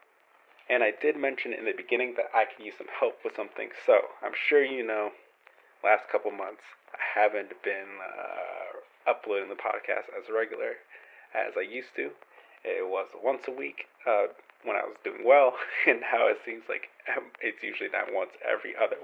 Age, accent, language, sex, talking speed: 30-49, American, English, male, 185 wpm